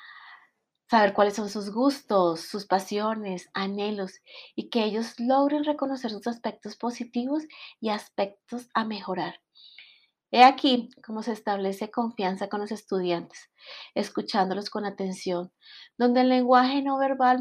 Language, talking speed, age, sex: Spanish, 130 wpm, 30-49, female